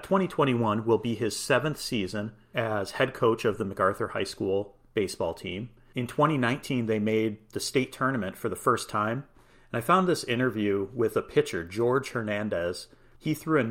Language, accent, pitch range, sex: English, American, 110-140 Hz, male